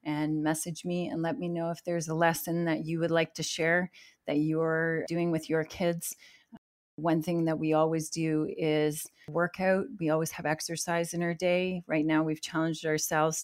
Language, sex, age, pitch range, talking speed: English, female, 30-49, 155-175 Hz, 195 wpm